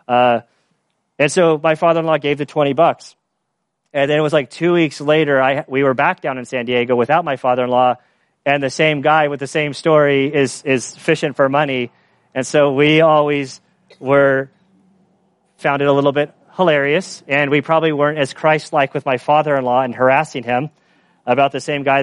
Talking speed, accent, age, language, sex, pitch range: 185 wpm, American, 30-49, English, male, 125-150 Hz